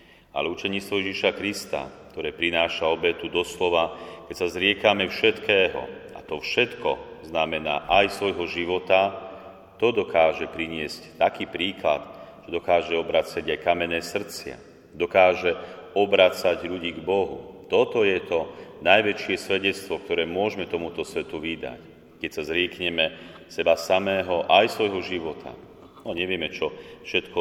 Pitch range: 85-95 Hz